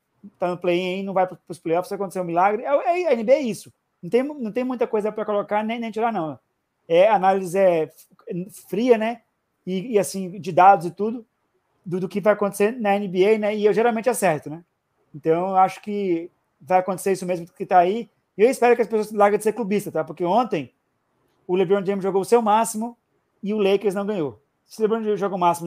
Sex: male